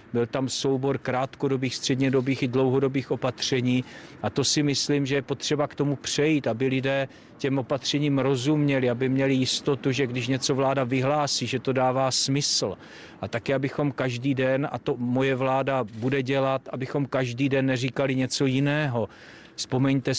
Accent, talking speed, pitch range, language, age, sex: native, 160 wpm, 125-140 Hz, Czech, 40-59, male